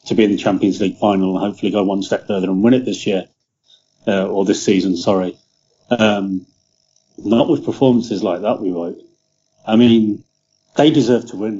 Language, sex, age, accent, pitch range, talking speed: English, male, 30-49, British, 100-120 Hz, 190 wpm